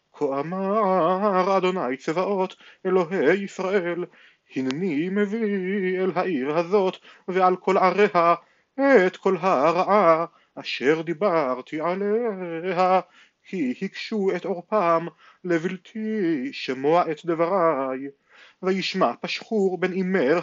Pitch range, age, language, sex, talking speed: 165-200 Hz, 30-49, Hebrew, male, 95 wpm